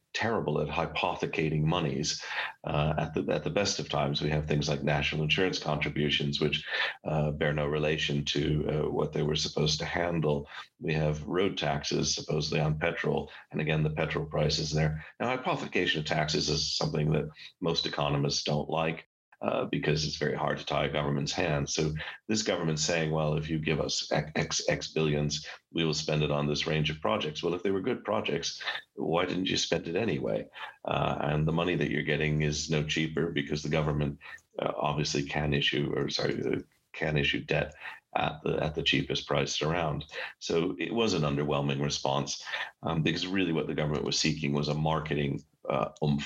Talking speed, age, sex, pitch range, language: 190 wpm, 40-59, male, 75-80 Hz, English